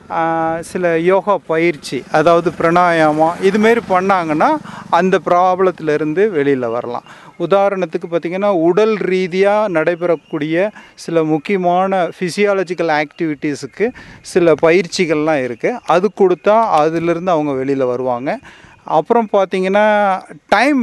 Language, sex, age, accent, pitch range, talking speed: Tamil, male, 40-59, native, 155-195 Hz, 90 wpm